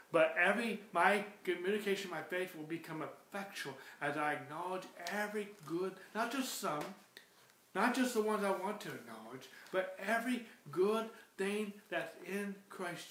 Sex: male